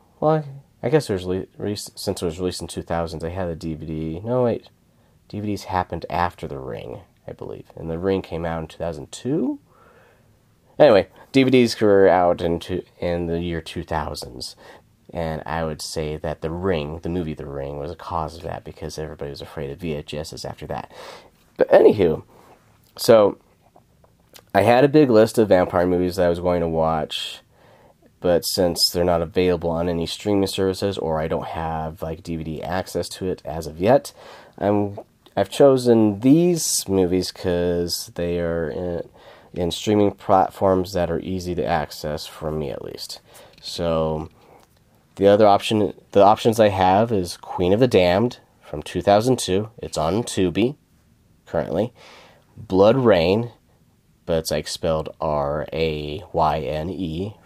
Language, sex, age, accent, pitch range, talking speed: English, male, 30-49, American, 80-100 Hz, 160 wpm